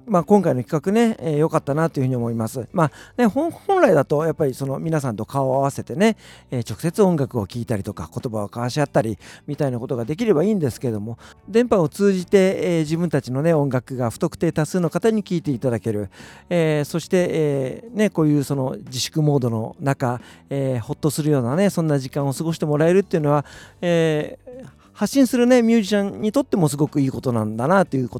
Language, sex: Japanese, male